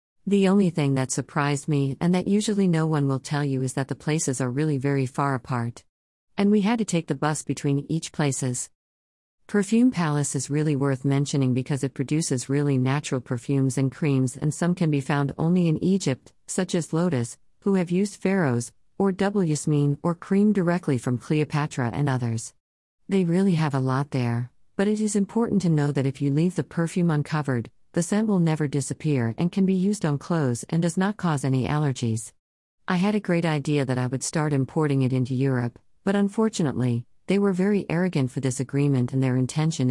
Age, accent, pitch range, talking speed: 40-59, American, 130-175 Hz, 200 wpm